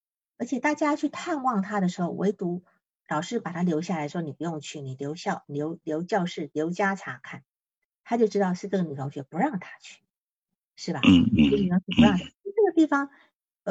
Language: Chinese